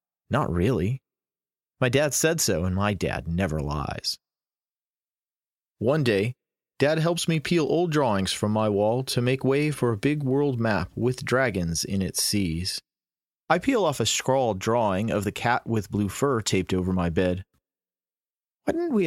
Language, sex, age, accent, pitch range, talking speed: English, male, 30-49, American, 90-125 Hz, 170 wpm